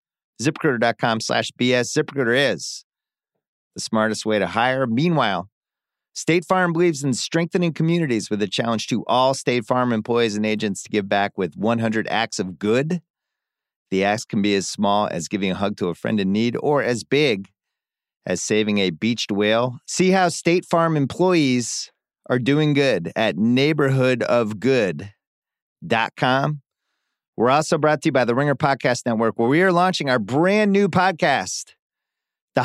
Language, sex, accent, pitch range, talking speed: English, male, American, 110-155 Hz, 160 wpm